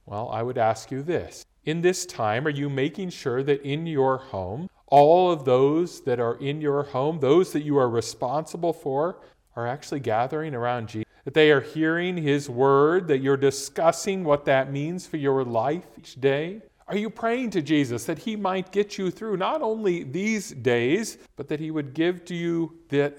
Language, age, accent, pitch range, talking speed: English, 40-59, American, 120-175 Hz, 195 wpm